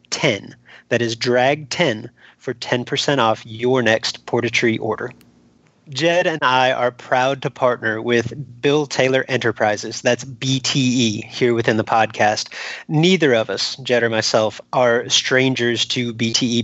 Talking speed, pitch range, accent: 145 wpm, 120-140 Hz, American